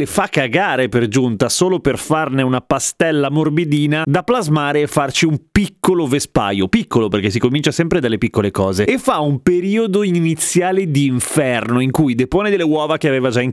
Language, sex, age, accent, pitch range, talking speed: Italian, male, 30-49, native, 130-170 Hz, 180 wpm